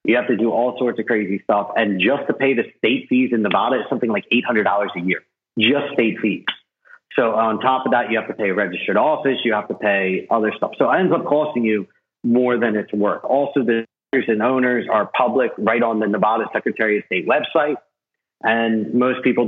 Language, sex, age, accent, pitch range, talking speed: English, male, 40-59, American, 110-130 Hz, 220 wpm